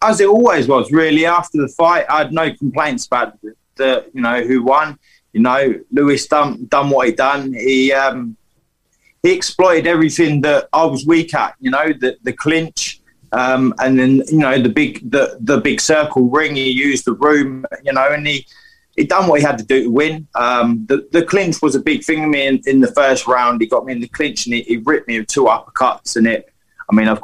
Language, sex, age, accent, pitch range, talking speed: English, male, 20-39, British, 125-160 Hz, 230 wpm